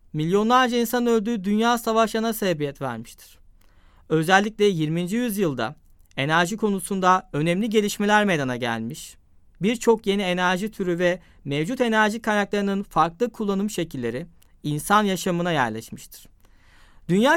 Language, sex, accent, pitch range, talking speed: Turkish, male, native, 140-215 Hz, 105 wpm